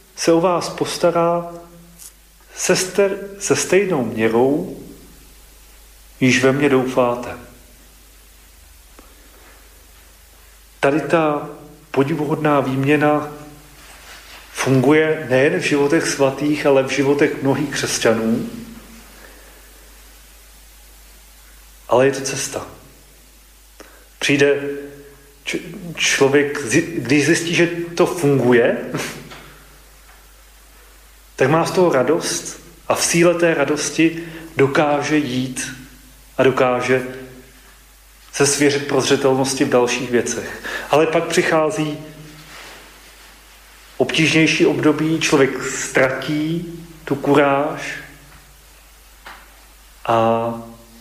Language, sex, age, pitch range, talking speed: Slovak, male, 40-59, 125-155 Hz, 80 wpm